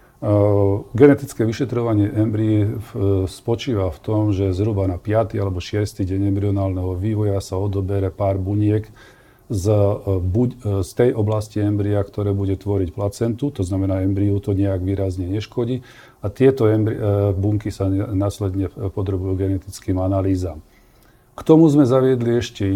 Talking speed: 125 wpm